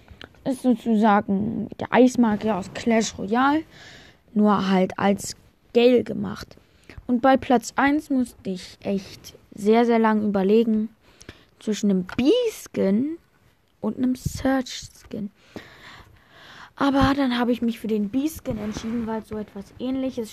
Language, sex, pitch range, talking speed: German, female, 200-250 Hz, 130 wpm